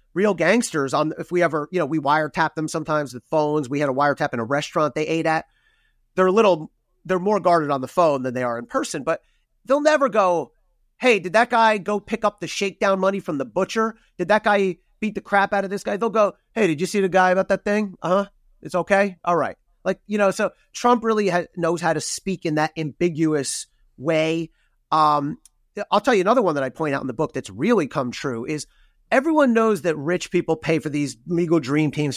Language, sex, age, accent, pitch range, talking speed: English, male, 30-49, American, 145-195 Hz, 230 wpm